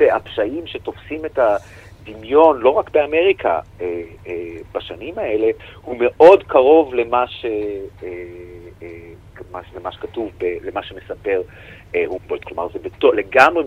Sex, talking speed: male, 110 wpm